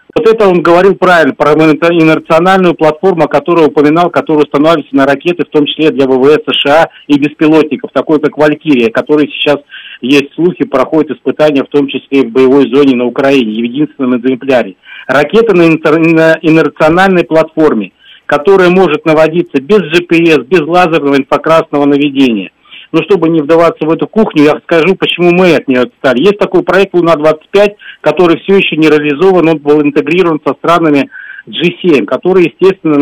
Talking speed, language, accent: 160 wpm, Russian, native